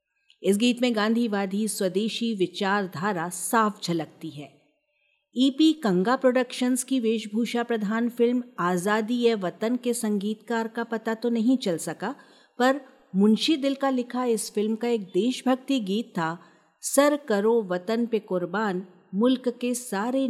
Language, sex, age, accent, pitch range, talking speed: Hindi, female, 50-69, native, 195-255 Hz, 140 wpm